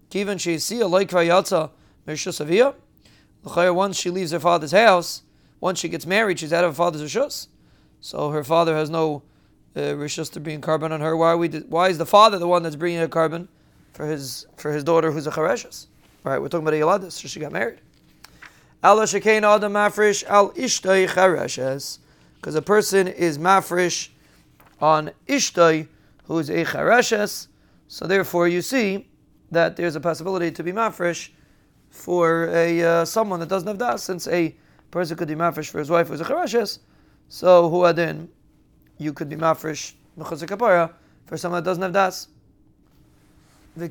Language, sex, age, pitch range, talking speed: English, male, 30-49, 160-200 Hz, 170 wpm